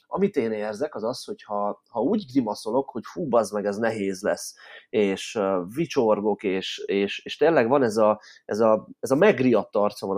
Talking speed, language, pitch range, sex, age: 190 wpm, Hungarian, 100-125 Hz, male, 20-39